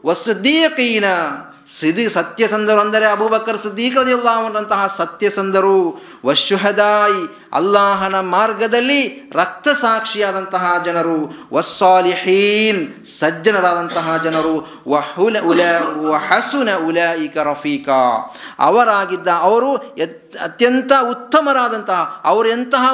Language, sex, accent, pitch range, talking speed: Kannada, male, native, 195-245 Hz, 50 wpm